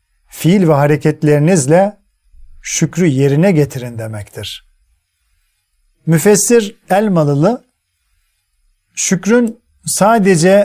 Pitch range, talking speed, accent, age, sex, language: 115-185 Hz, 60 wpm, native, 40-59, male, Turkish